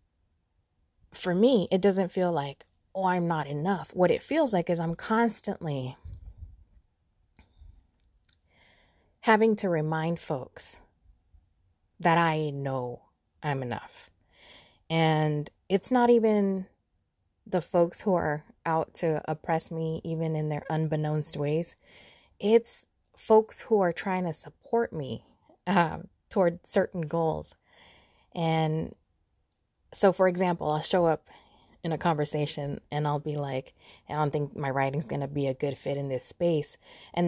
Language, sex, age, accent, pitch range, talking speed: English, female, 20-39, American, 145-200 Hz, 135 wpm